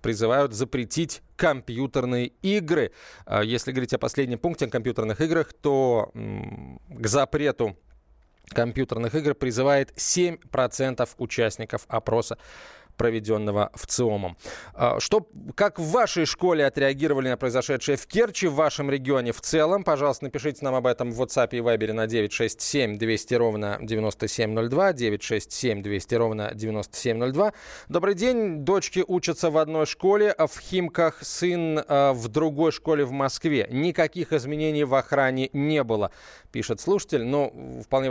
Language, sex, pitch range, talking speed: Russian, male, 115-150 Hz, 130 wpm